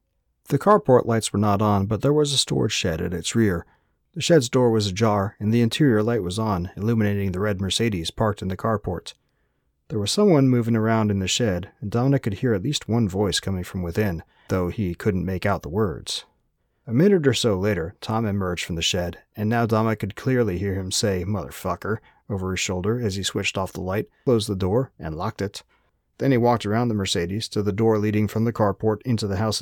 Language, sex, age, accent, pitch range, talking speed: English, male, 30-49, American, 95-120 Hz, 225 wpm